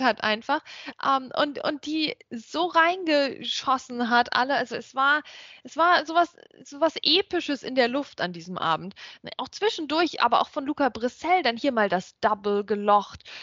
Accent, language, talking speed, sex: German, German, 165 wpm, female